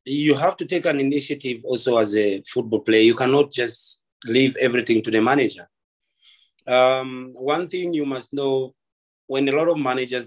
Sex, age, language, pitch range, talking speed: male, 30-49, English, 115-150 Hz, 175 wpm